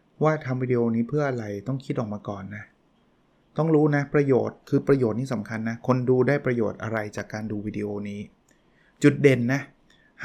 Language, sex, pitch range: Thai, male, 110-135 Hz